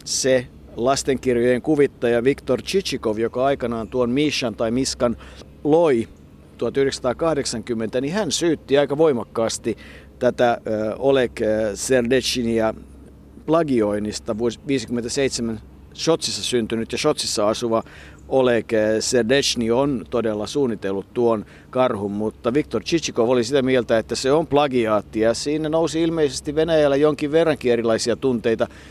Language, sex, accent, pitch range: Finnish, male, native, 110-130 Hz